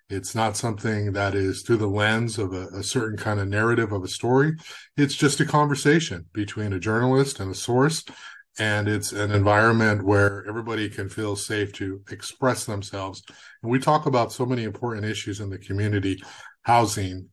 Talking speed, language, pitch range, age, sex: 180 wpm, English, 100-115 Hz, 30-49, male